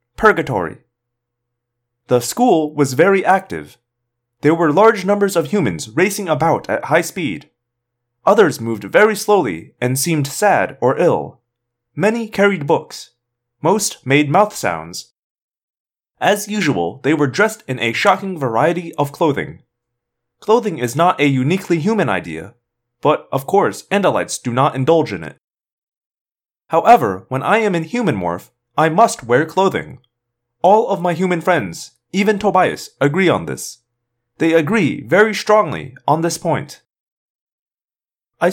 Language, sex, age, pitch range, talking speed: English, male, 30-49, 120-200 Hz, 140 wpm